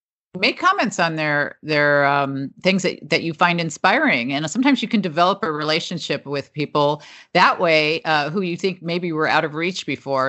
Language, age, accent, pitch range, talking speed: English, 50-69, American, 145-185 Hz, 190 wpm